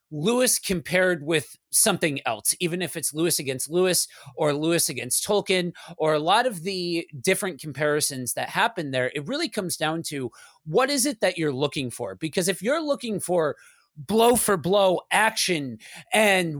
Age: 30-49